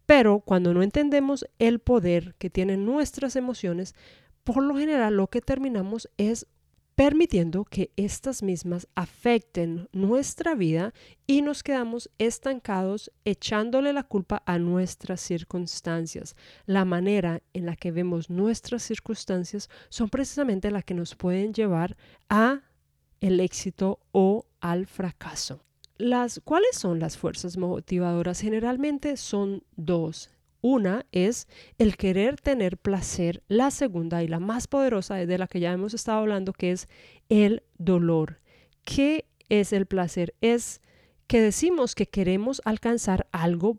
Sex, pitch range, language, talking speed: female, 180-235 Hz, Spanish, 135 wpm